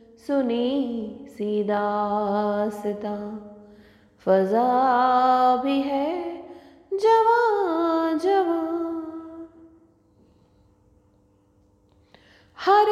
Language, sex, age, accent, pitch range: English, female, 30-49, Indian, 245-350 Hz